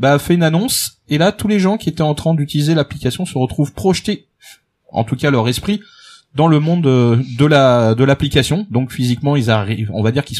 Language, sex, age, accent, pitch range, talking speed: French, male, 30-49, French, 115-160 Hz, 220 wpm